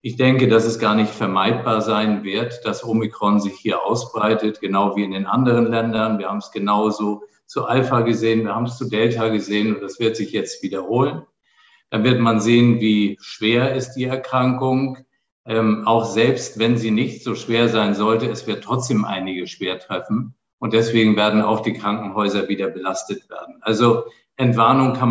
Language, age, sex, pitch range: German, 50-69, male, 110-135 Hz